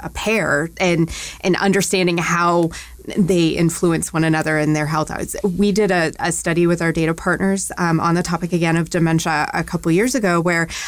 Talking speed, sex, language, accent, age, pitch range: 200 wpm, female, English, American, 20-39, 160-180 Hz